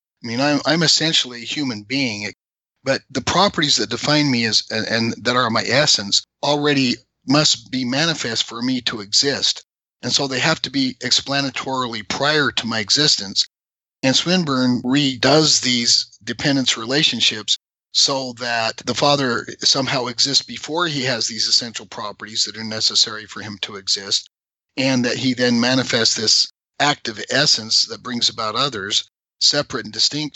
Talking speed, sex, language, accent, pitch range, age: 150 wpm, male, English, American, 110-140 Hz, 50-69